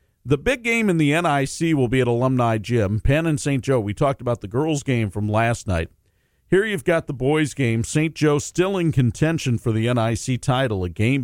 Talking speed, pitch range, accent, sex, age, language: 220 wpm, 105-145 Hz, American, male, 50-69, English